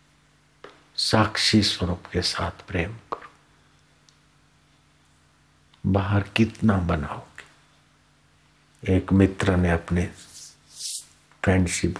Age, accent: 60-79, native